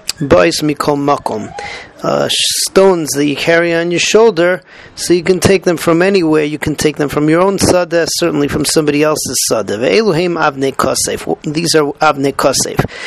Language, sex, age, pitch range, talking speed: English, male, 40-59, 145-175 Hz, 135 wpm